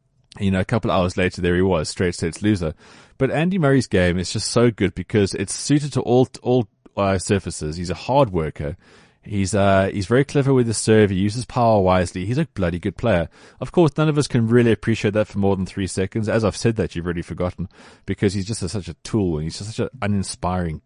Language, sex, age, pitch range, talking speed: English, male, 30-49, 90-120 Hz, 240 wpm